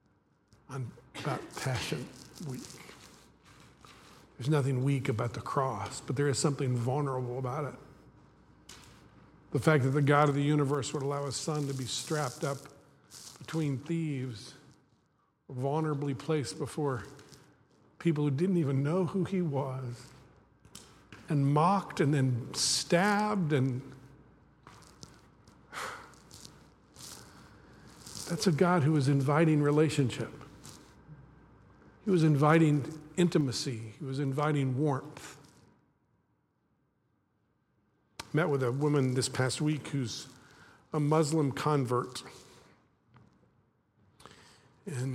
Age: 50-69